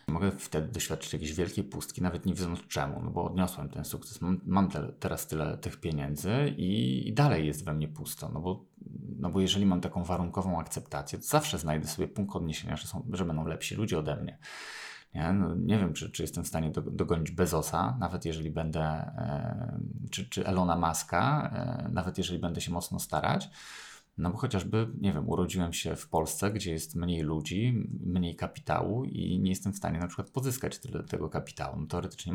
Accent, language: native, Polish